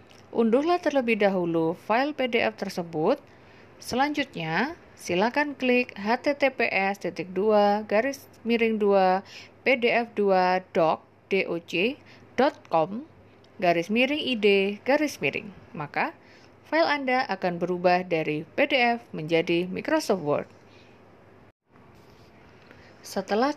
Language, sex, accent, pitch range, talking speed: Indonesian, female, native, 170-250 Hz, 65 wpm